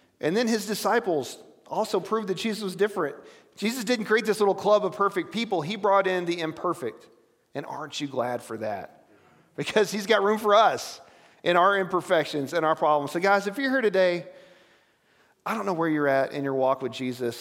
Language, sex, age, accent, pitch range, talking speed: English, male, 40-59, American, 145-190 Hz, 205 wpm